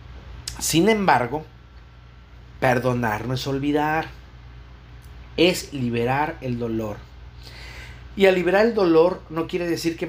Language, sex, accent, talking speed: Spanish, male, Mexican, 115 wpm